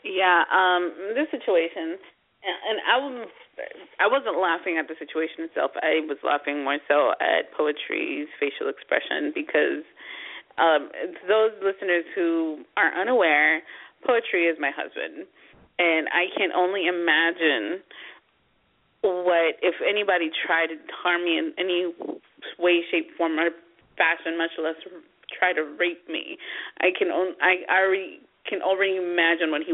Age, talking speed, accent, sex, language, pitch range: 30-49, 145 wpm, American, female, English, 165-230 Hz